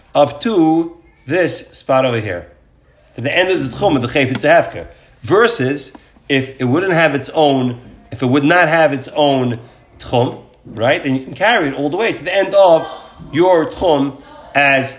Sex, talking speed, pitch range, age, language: male, 190 wpm, 130-180 Hz, 40-59, English